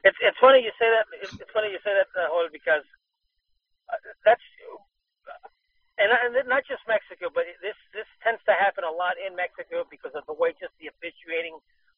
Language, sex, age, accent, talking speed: English, male, 40-59, American, 185 wpm